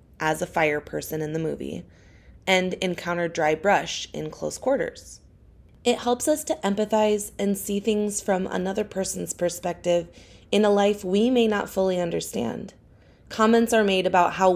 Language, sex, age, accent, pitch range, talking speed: English, female, 20-39, American, 165-200 Hz, 160 wpm